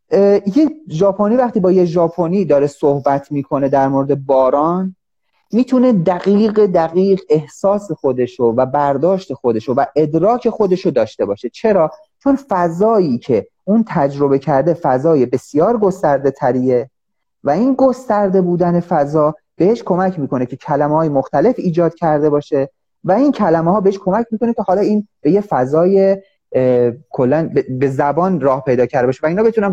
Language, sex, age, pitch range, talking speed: Persian, male, 30-49, 140-205 Hz, 150 wpm